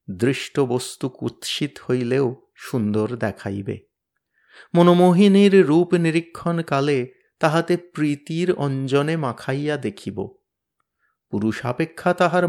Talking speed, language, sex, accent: 75 wpm, Bengali, male, native